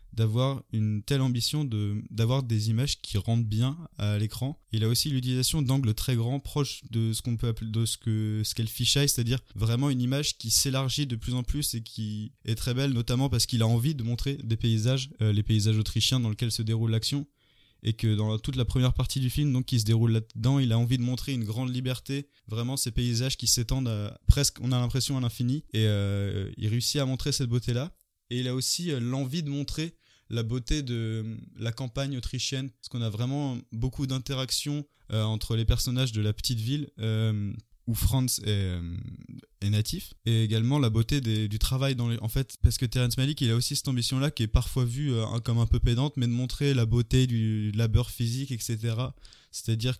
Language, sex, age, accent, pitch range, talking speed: French, male, 20-39, French, 110-130 Hz, 215 wpm